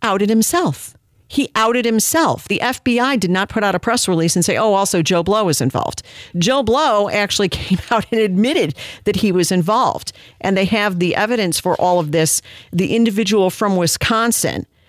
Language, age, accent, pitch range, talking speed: English, 50-69, American, 170-230 Hz, 190 wpm